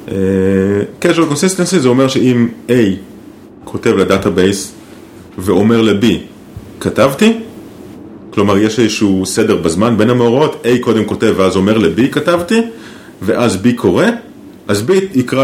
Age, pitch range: 30-49, 100-130 Hz